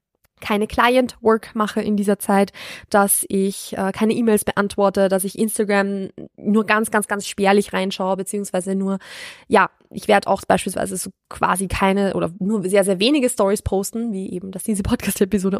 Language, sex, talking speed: German, female, 165 wpm